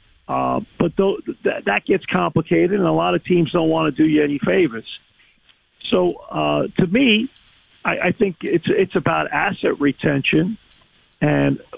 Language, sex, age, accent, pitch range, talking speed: English, male, 50-69, American, 145-175 Hz, 165 wpm